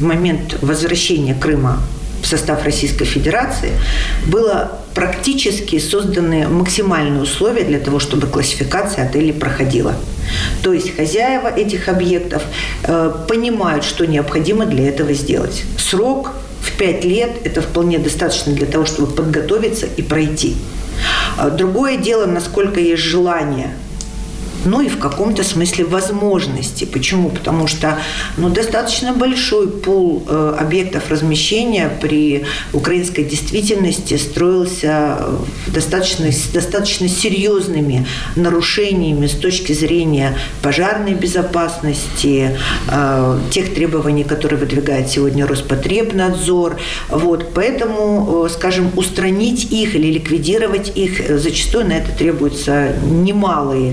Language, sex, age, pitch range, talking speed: Russian, female, 50-69, 145-190 Hz, 110 wpm